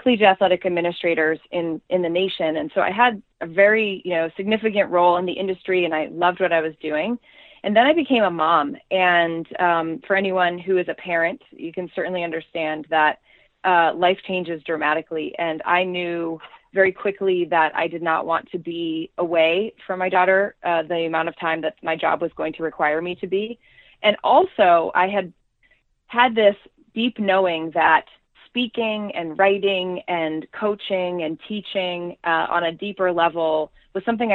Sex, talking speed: female, 180 wpm